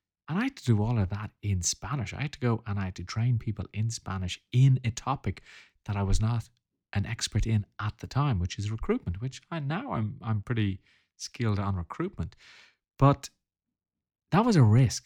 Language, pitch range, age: English, 95-125 Hz, 30-49